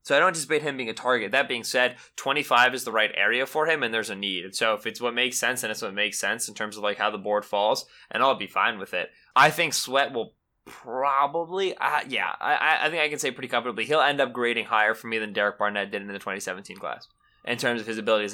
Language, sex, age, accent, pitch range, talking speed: English, male, 20-39, American, 110-140 Hz, 270 wpm